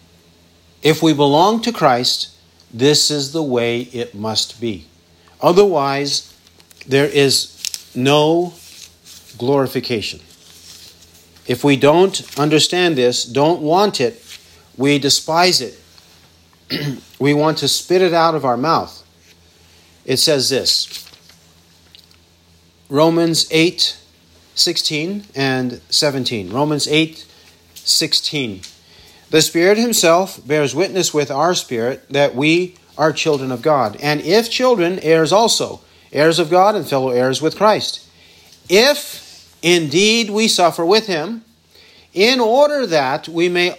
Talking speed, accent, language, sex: 115 wpm, American, English, male